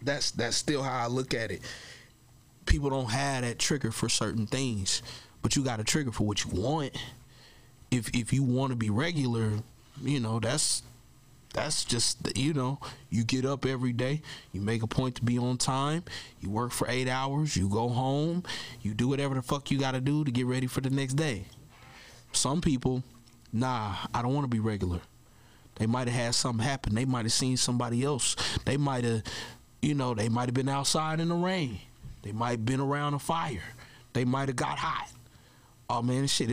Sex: male